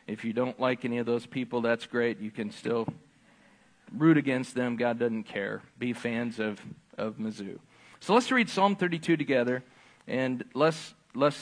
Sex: male